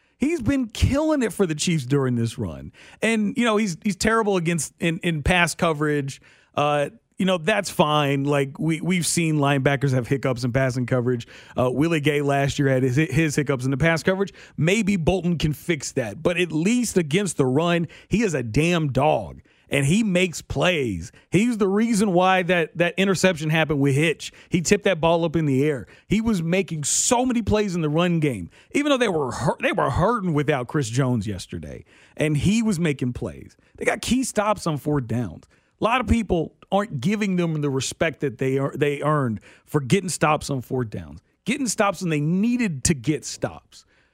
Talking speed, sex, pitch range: 205 wpm, male, 140-195 Hz